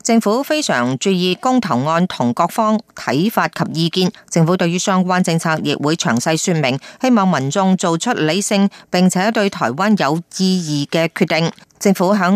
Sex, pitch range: female, 165-215 Hz